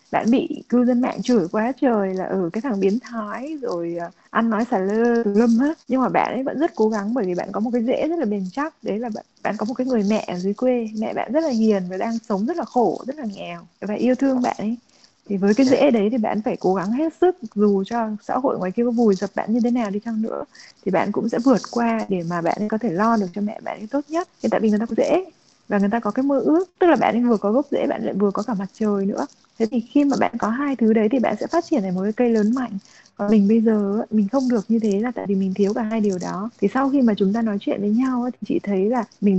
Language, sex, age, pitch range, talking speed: Vietnamese, female, 20-39, 205-250 Hz, 305 wpm